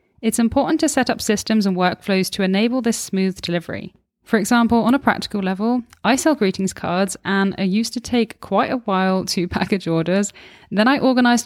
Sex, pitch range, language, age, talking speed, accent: female, 190-230 Hz, English, 10-29, 195 wpm, British